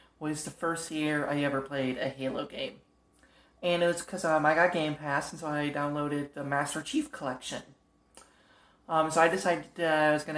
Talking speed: 195 wpm